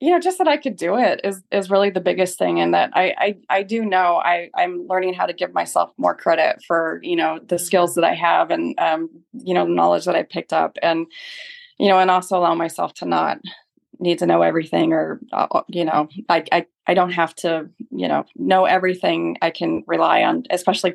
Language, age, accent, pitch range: English, 20-39, American, 170-210 Hz